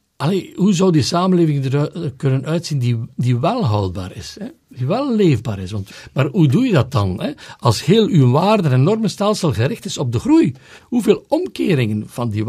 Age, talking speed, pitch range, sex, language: 60-79, 180 wpm, 120-185 Hz, male, Dutch